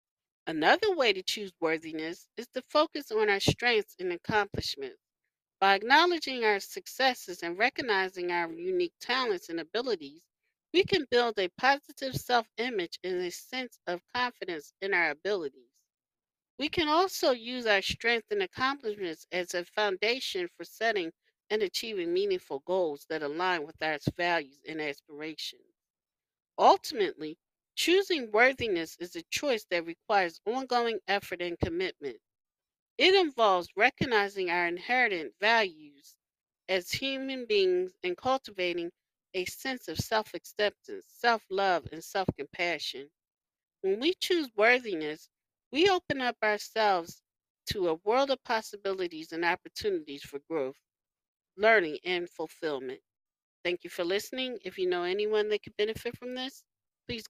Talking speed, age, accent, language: 130 wpm, 40-59, American, English